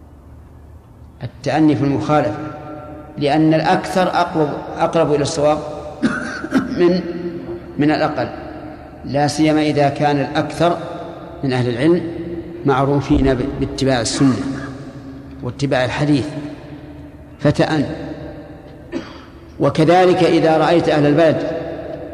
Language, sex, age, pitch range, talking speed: Arabic, male, 50-69, 140-165 Hz, 85 wpm